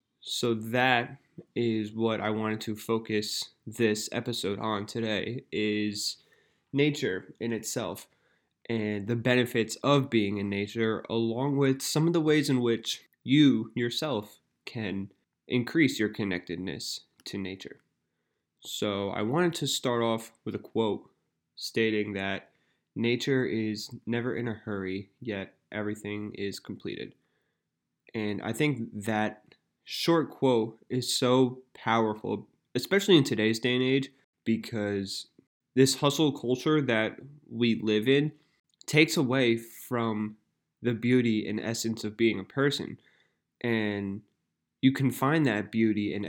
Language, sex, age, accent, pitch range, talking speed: English, male, 20-39, American, 105-125 Hz, 130 wpm